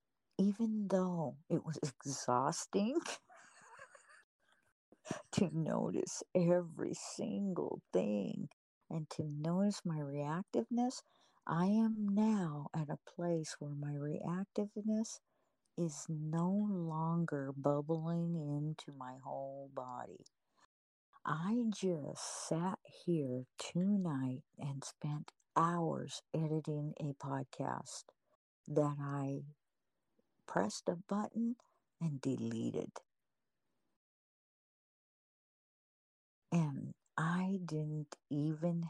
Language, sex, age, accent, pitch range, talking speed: English, female, 50-69, American, 145-185 Hz, 85 wpm